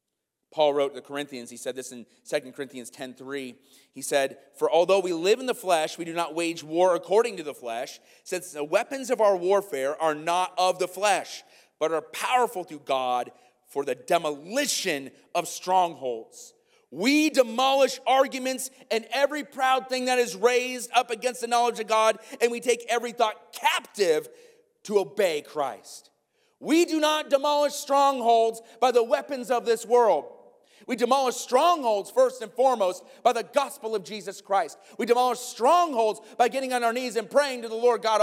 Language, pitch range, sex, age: English, 195-275 Hz, male, 30-49